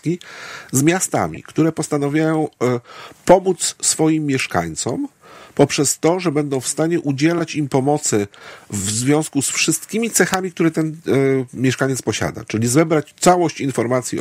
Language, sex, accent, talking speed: Polish, male, native, 125 wpm